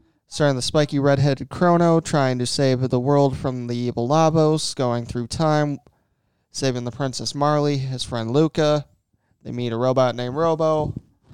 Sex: male